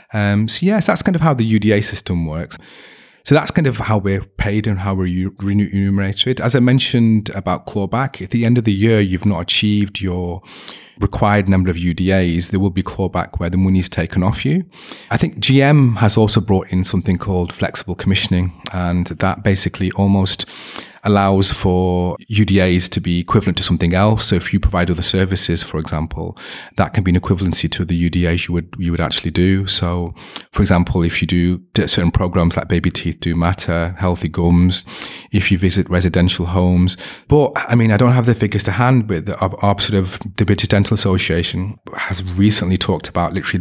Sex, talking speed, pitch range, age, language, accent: male, 195 wpm, 90-105 Hz, 30-49, English, British